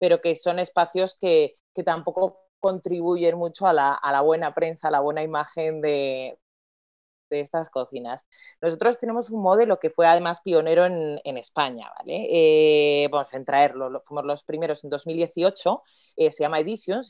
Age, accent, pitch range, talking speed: 30-49, Spanish, 145-185 Hz, 170 wpm